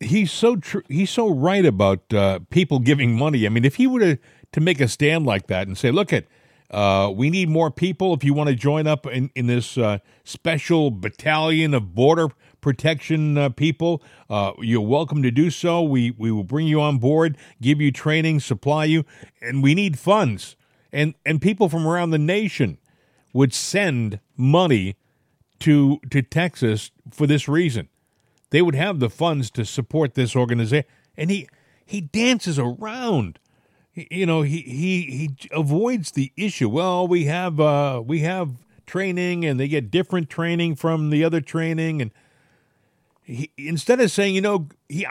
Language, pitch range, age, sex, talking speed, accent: English, 130-170 Hz, 50-69, male, 180 wpm, American